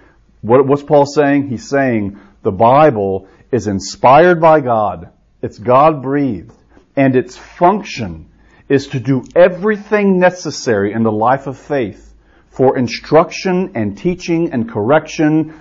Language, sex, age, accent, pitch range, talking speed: English, male, 50-69, American, 120-165 Hz, 125 wpm